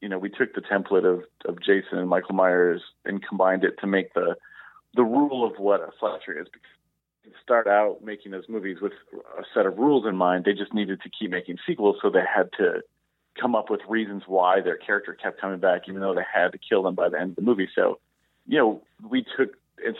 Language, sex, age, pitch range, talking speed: English, male, 40-59, 95-120 Hz, 235 wpm